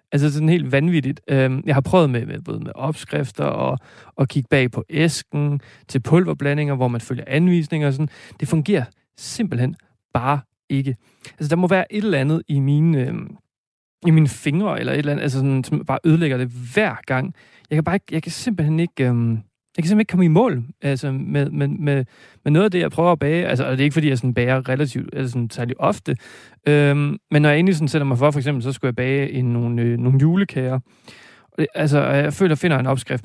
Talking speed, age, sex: 225 wpm, 40-59, male